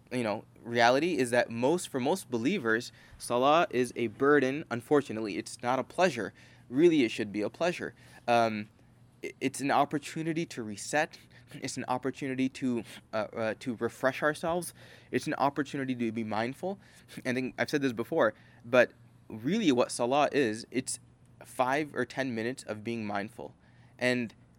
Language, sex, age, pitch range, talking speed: English, male, 20-39, 110-130 Hz, 160 wpm